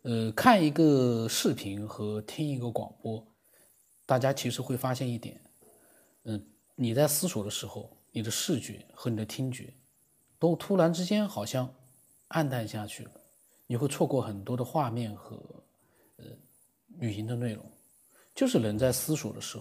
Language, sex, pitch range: Chinese, male, 110-145 Hz